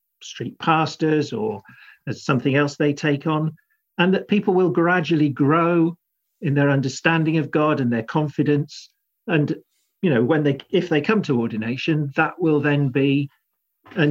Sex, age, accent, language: male, 50-69, British, English